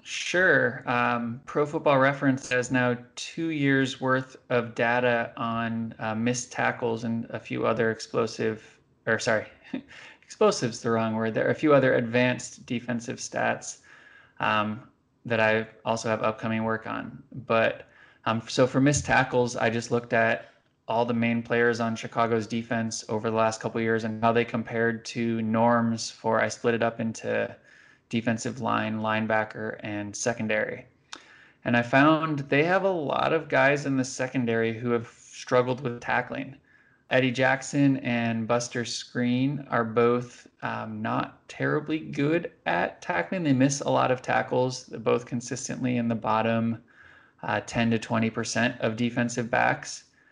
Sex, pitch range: male, 115-130 Hz